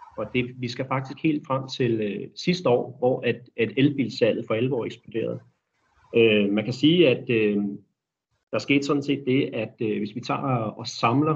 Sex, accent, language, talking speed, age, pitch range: male, native, Danish, 190 wpm, 30-49, 115-140 Hz